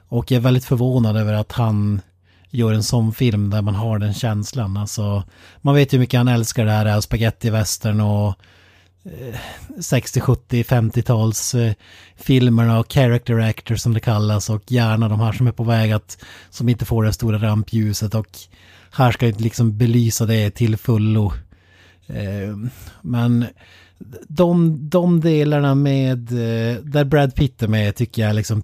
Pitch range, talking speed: 105-125 Hz, 165 wpm